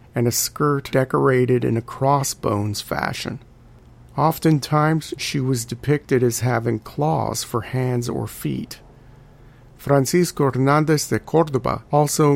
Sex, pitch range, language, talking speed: male, 120-140 Hz, English, 115 wpm